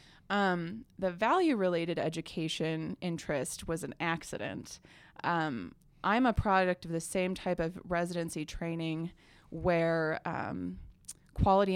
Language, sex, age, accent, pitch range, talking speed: English, female, 20-39, American, 165-190 Hz, 110 wpm